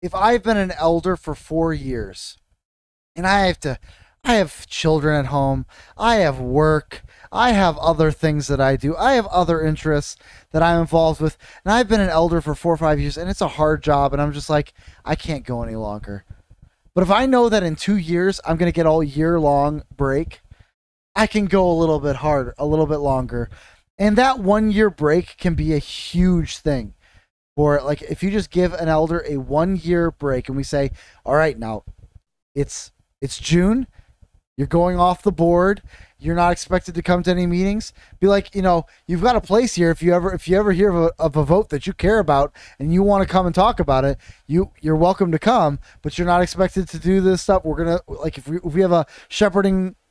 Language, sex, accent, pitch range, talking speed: English, male, American, 145-185 Hz, 225 wpm